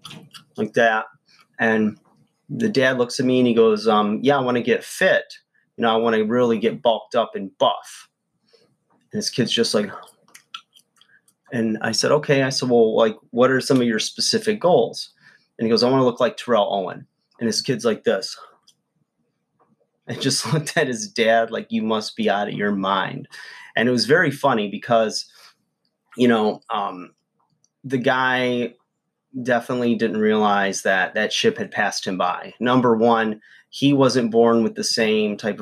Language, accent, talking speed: English, American, 180 wpm